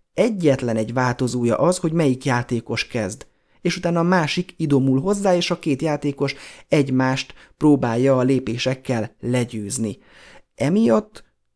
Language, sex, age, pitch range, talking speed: Hungarian, male, 30-49, 130-150 Hz, 125 wpm